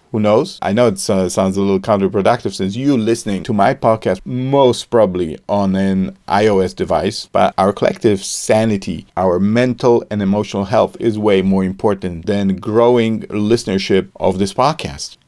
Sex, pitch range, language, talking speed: male, 100-125 Hz, English, 155 wpm